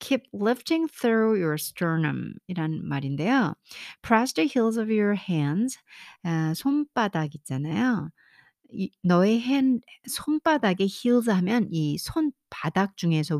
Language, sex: Korean, female